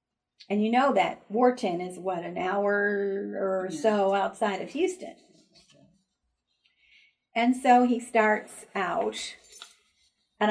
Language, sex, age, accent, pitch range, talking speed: English, female, 50-69, American, 205-270 Hz, 115 wpm